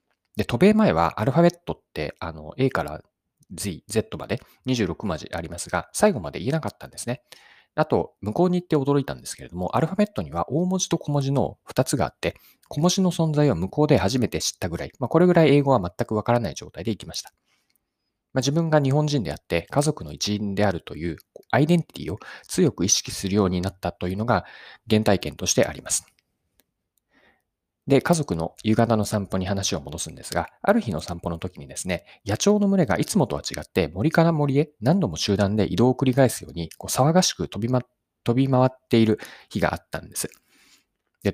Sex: male